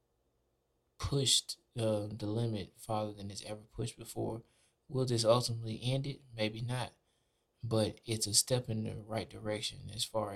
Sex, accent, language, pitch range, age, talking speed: male, American, English, 105-120 Hz, 20-39, 155 wpm